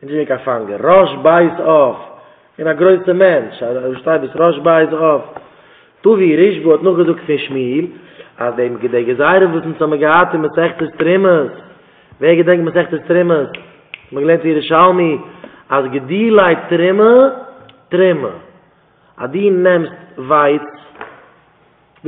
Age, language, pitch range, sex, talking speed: 30-49, English, 155-200 Hz, male, 100 wpm